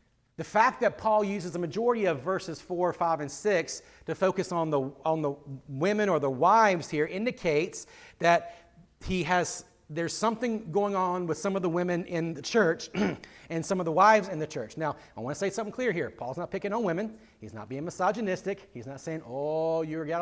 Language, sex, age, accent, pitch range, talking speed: English, male, 40-59, American, 160-210 Hz, 215 wpm